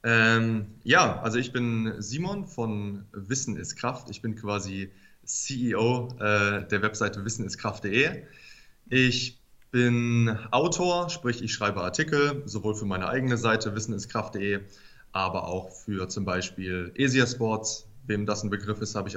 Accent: German